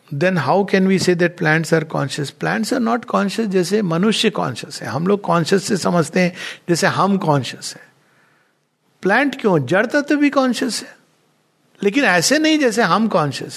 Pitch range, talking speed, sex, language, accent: 165-230 Hz, 175 wpm, male, Hindi, native